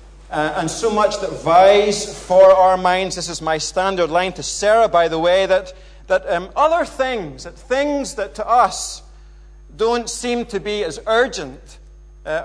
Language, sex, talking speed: English, male, 175 wpm